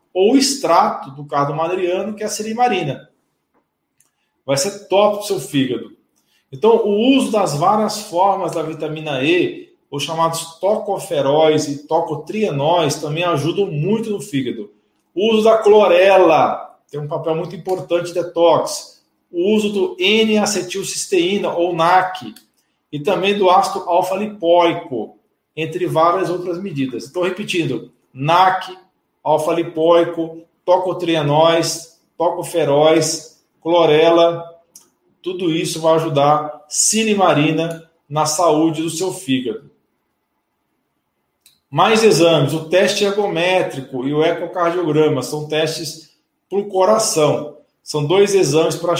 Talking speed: 120 wpm